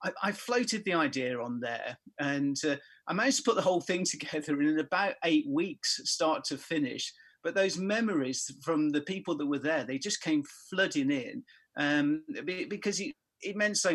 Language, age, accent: English, 40-59, British